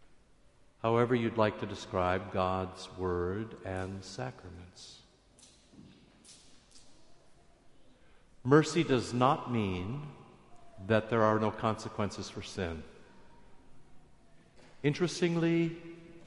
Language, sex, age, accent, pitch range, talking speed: English, male, 50-69, American, 105-130 Hz, 75 wpm